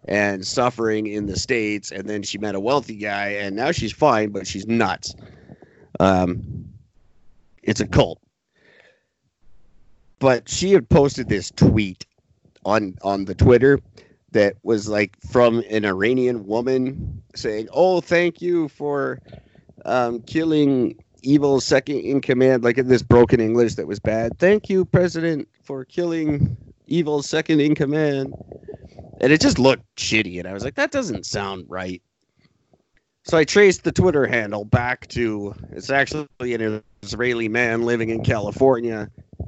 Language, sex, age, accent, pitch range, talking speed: English, male, 30-49, American, 105-135 Hz, 145 wpm